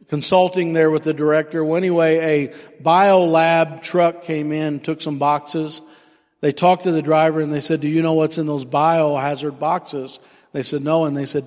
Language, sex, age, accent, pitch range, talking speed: English, male, 50-69, American, 140-160 Hz, 200 wpm